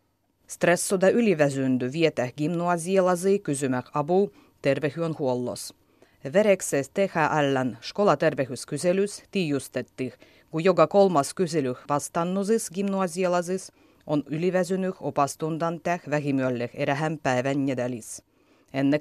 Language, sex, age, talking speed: Finnish, female, 30-49, 90 wpm